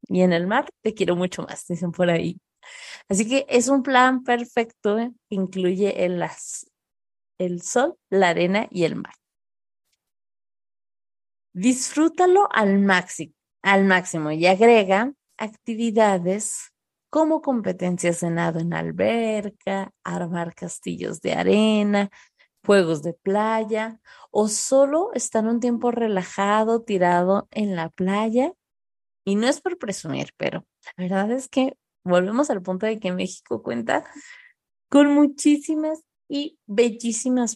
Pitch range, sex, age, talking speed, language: 180-235 Hz, female, 30-49, 125 wpm, Spanish